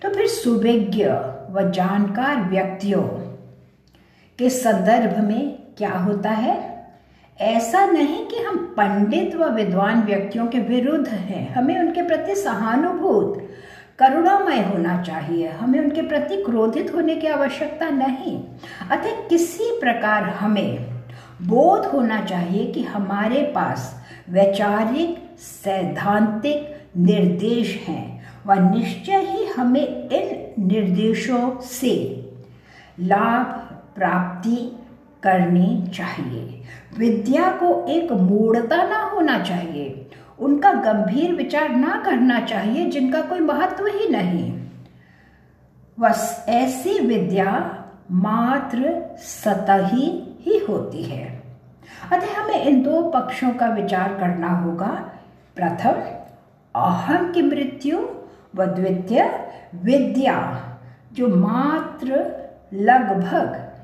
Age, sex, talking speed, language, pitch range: 60-79, female, 100 wpm, English, 190-295 Hz